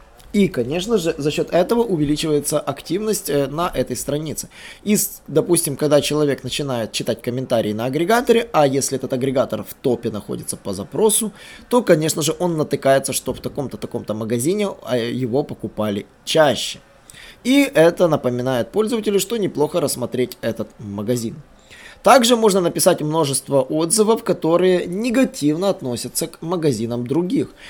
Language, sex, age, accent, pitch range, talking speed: Russian, male, 20-39, native, 130-185 Hz, 130 wpm